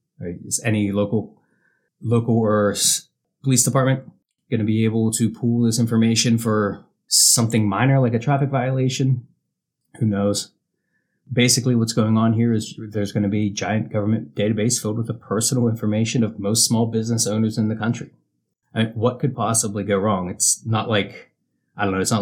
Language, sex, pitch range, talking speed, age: English, male, 105-125 Hz, 180 wpm, 30-49